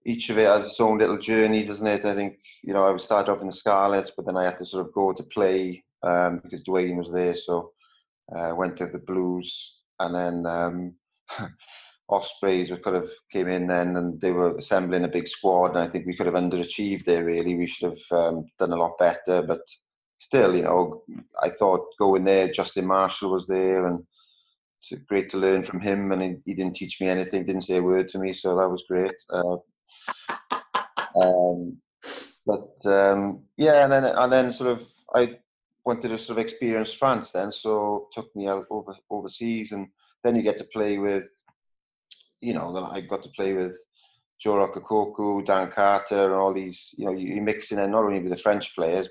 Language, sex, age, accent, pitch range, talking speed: English, male, 20-39, British, 90-105 Hz, 210 wpm